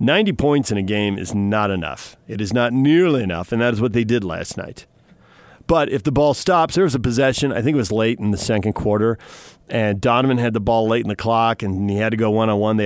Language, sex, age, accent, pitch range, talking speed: English, male, 40-59, American, 105-130 Hz, 265 wpm